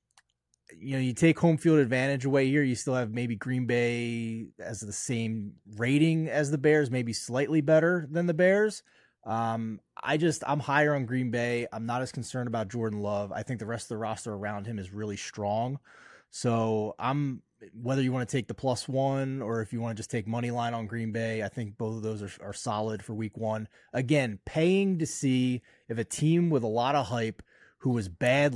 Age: 20-39